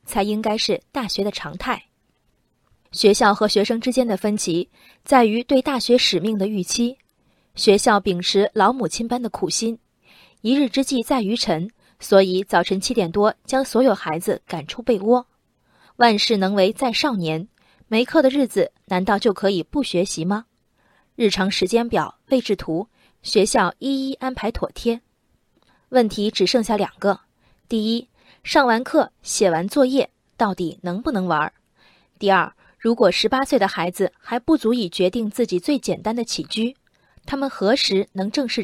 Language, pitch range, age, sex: Chinese, 190-250 Hz, 20-39, female